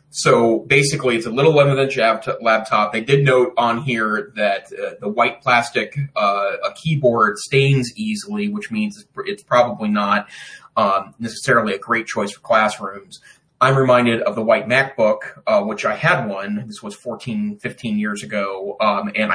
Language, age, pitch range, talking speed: English, 30-49, 105-145 Hz, 165 wpm